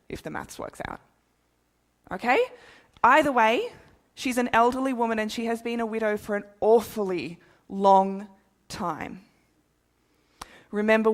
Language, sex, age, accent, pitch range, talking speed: English, female, 20-39, Australian, 195-235 Hz, 130 wpm